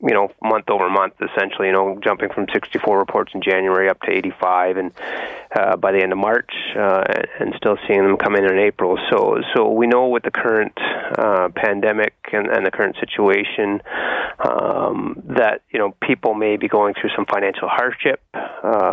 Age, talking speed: 30-49, 185 wpm